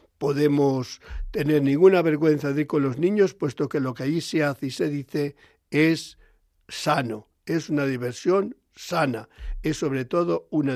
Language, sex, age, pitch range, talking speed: Spanish, male, 60-79, 130-155 Hz, 160 wpm